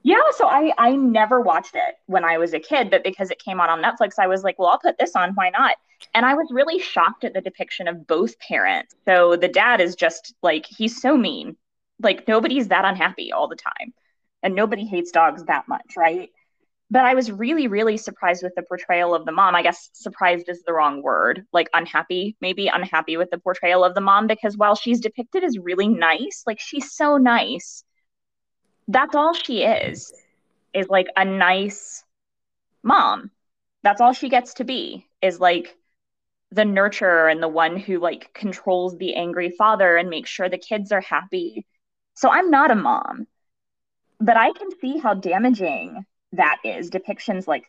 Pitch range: 180-245 Hz